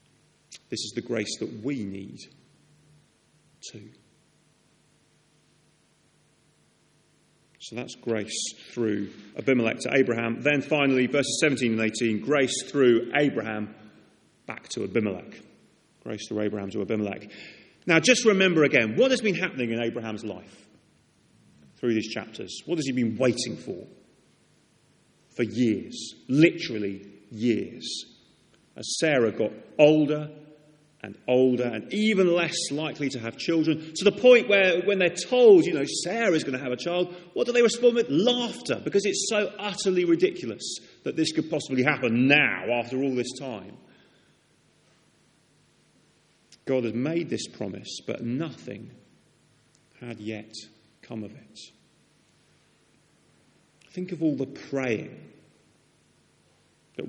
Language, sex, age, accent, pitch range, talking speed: English, male, 40-59, British, 115-160 Hz, 130 wpm